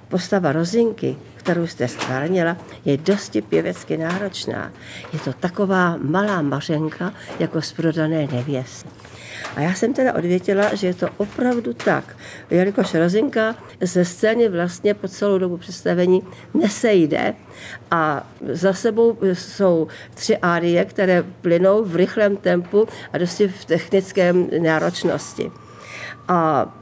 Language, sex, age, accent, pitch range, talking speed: Czech, female, 50-69, native, 165-205 Hz, 120 wpm